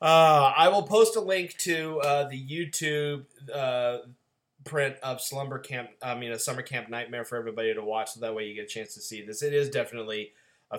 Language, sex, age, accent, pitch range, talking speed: English, male, 30-49, American, 115-145 Hz, 215 wpm